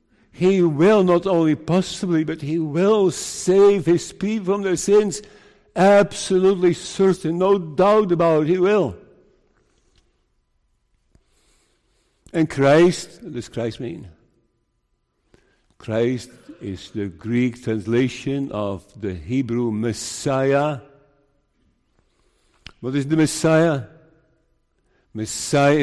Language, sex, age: English, male, 60-79